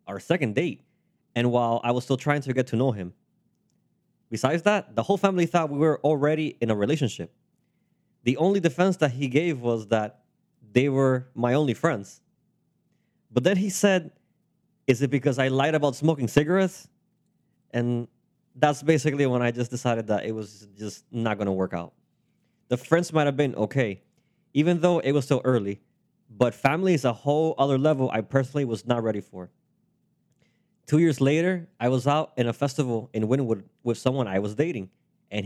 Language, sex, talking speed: English, male, 185 wpm